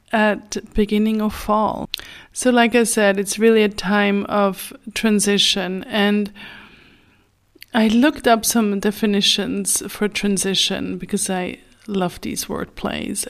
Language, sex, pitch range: English, female, 190-225 Hz